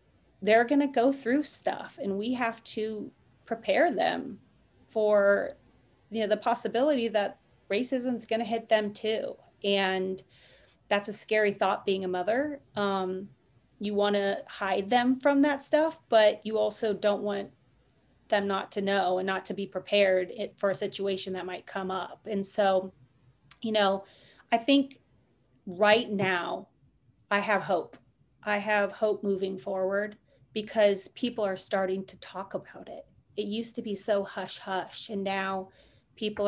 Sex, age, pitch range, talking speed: female, 30-49, 190-220 Hz, 160 wpm